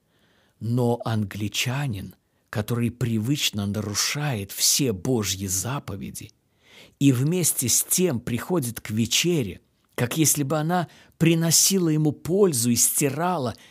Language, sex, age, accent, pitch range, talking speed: Russian, male, 50-69, native, 110-155 Hz, 105 wpm